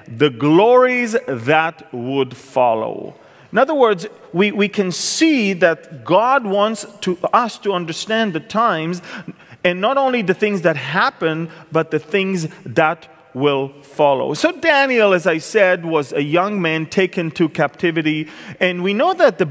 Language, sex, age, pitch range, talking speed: English, male, 40-59, 150-215 Hz, 155 wpm